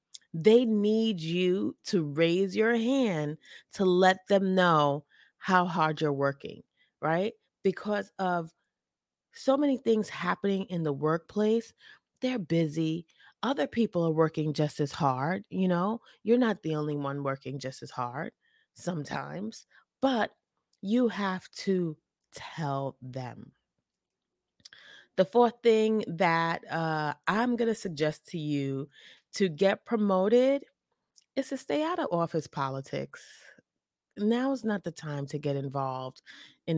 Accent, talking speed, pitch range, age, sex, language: American, 130 wpm, 150-215 Hz, 30-49, female, English